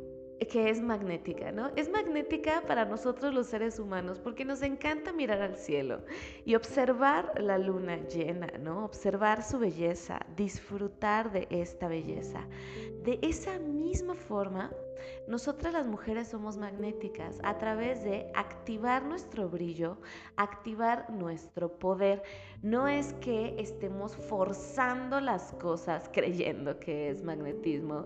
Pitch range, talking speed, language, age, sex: 170-230 Hz, 125 wpm, Spanish, 20-39, female